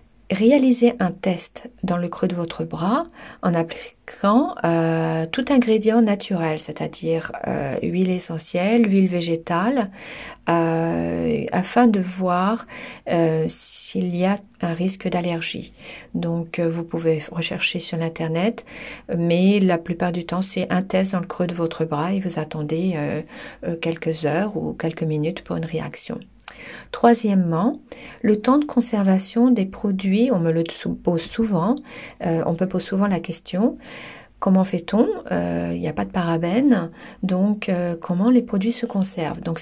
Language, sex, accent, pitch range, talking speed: French, female, French, 170-215 Hz, 150 wpm